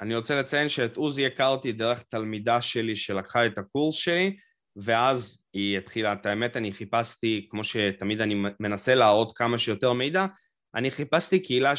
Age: 20-39